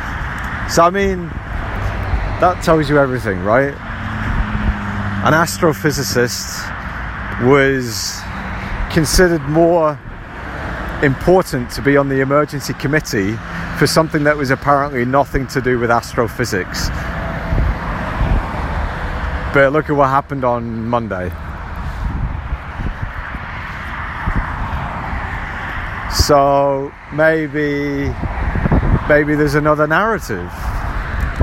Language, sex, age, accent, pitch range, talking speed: English, male, 40-59, British, 90-140 Hz, 80 wpm